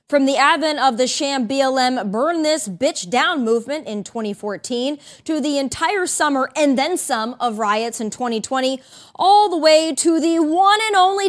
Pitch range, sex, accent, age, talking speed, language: 235-320 Hz, female, American, 20-39, 175 wpm, English